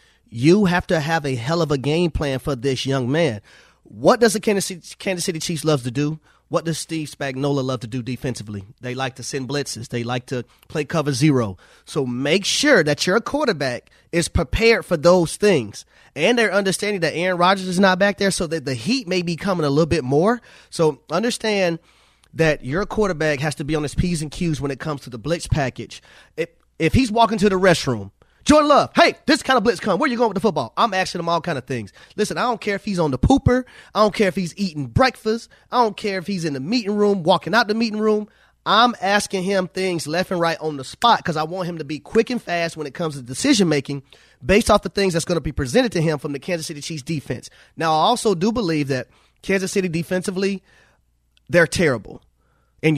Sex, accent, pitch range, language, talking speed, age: male, American, 140-195 Hz, English, 235 wpm, 30-49